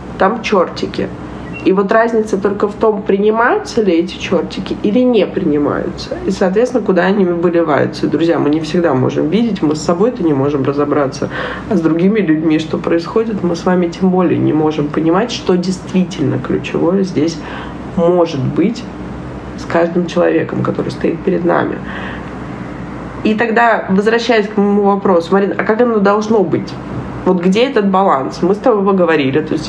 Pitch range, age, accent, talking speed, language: 160-195 Hz, 20-39, native, 170 wpm, Russian